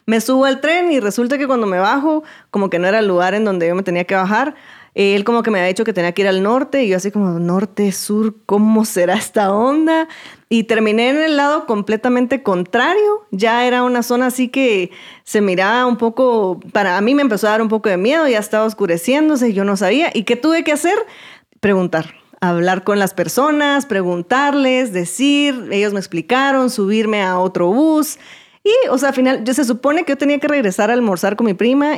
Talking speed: 220 wpm